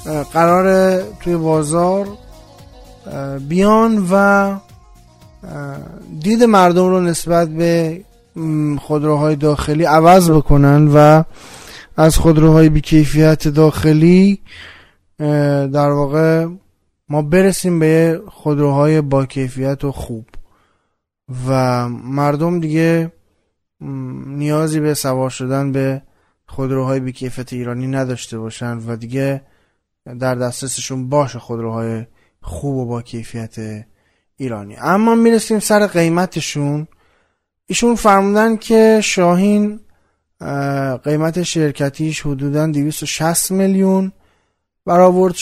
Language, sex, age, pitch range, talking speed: Persian, male, 20-39, 130-175 Hz, 85 wpm